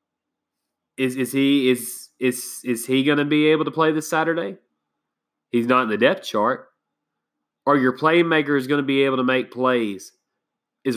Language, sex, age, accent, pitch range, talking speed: English, male, 20-39, American, 120-140 Hz, 165 wpm